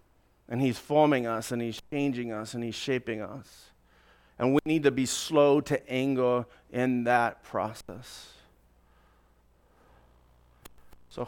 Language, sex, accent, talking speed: English, male, American, 130 wpm